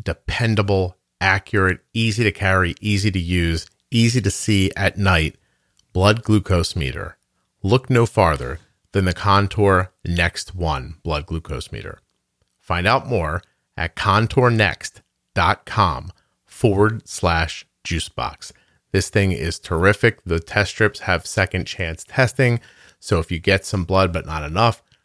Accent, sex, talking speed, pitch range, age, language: American, male, 135 wpm, 85-110 Hz, 40-59, English